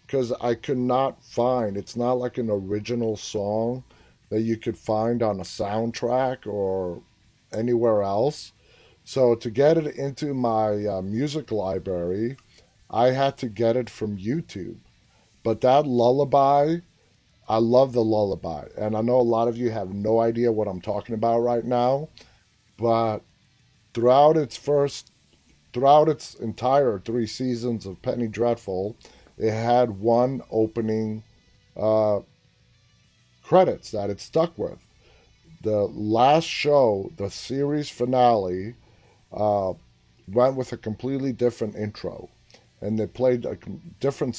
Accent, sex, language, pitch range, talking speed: American, male, English, 105-125 Hz, 135 wpm